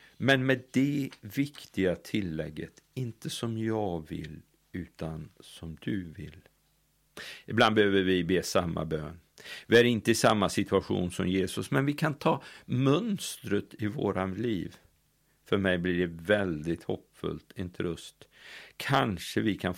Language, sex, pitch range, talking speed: Swedish, male, 90-115 Hz, 135 wpm